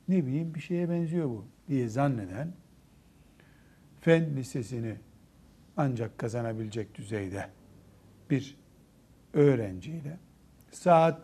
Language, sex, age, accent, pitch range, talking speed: Turkish, male, 60-79, native, 120-160 Hz, 85 wpm